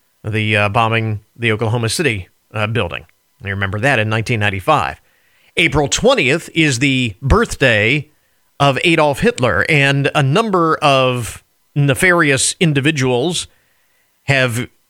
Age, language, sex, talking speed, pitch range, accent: 40-59, English, male, 115 wpm, 120-155 Hz, American